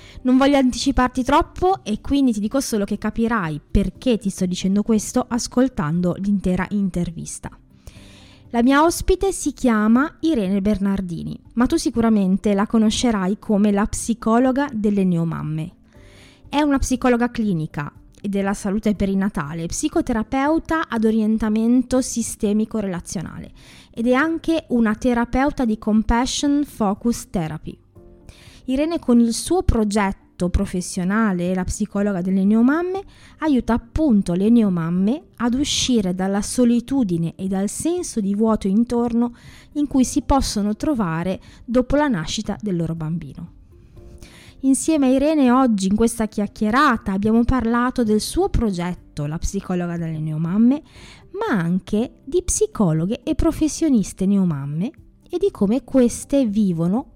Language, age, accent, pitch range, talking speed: Italian, 20-39, native, 195-260 Hz, 130 wpm